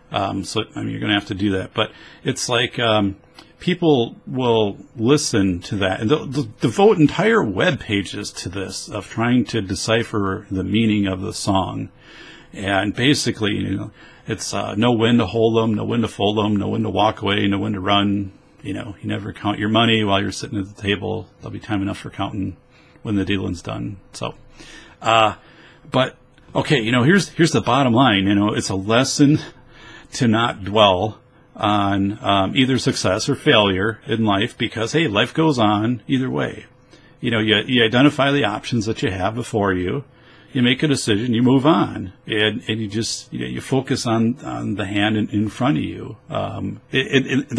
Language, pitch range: English, 100-130 Hz